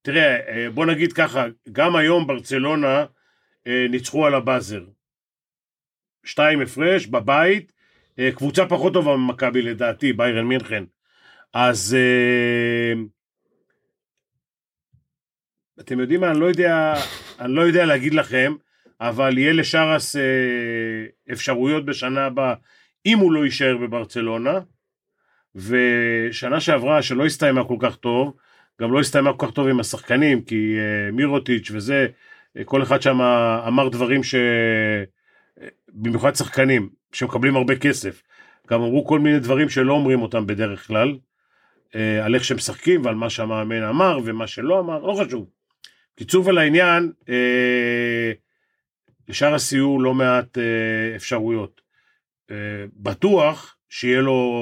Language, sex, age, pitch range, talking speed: Hebrew, male, 40-59, 115-145 Hz, 125 wpm